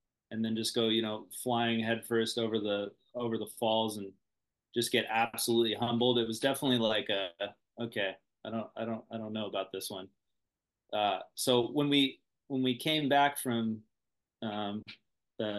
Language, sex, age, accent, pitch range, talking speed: English, male, 30-49, American, 105-125 Hz, 175 wpm